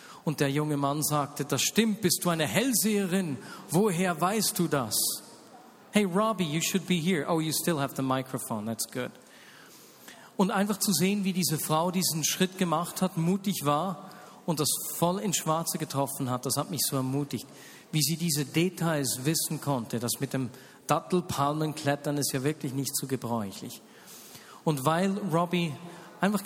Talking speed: 170 wpm